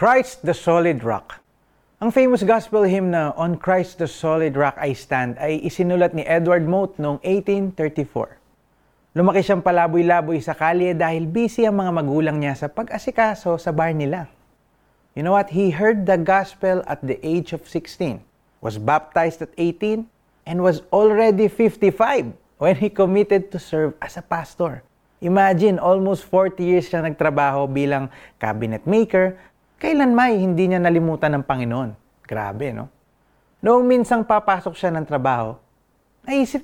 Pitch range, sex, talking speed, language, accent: 145-200 Hz, male, 150 wpm, Filipino, native